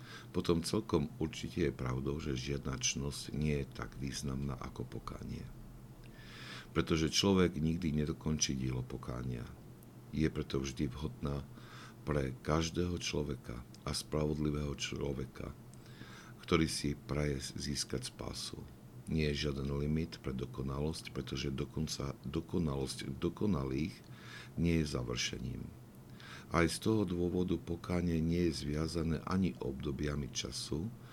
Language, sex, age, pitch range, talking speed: Slovak, male, 60-79, 70-85 Hz, 110 wpm